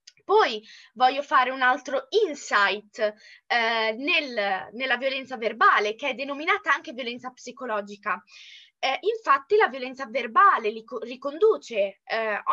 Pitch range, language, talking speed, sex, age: 235-335 Hz, Italian, 120 wpm, female, 20-39